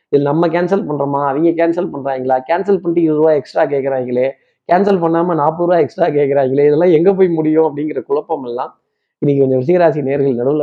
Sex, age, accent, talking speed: male, 20-39, native, 165 wpm